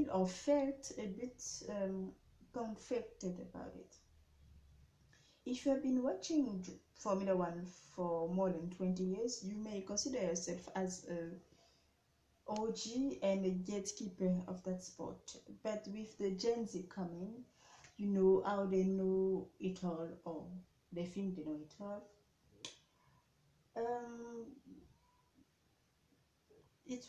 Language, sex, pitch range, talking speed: French, female, 185-250 Hz, 120 wpm